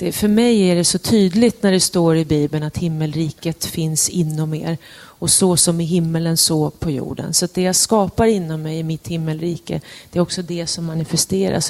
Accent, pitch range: native, 165-190 Hz